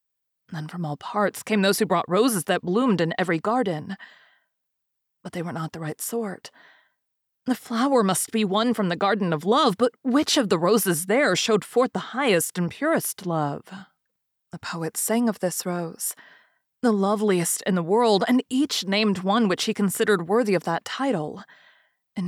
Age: 30-49